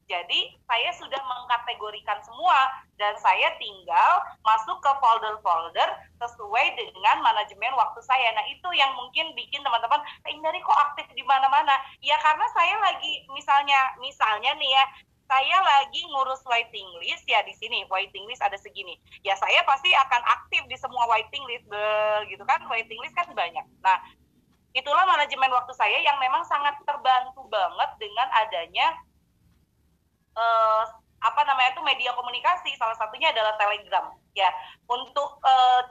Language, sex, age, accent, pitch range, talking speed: Indonesian, female, 30-49, native, 215-290 Hz, 150 wpm